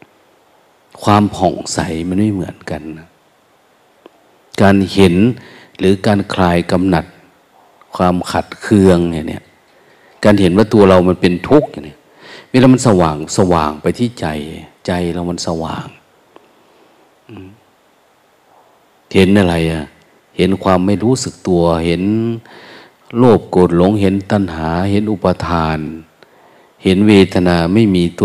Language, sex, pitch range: Thai, male, 85-100 Hz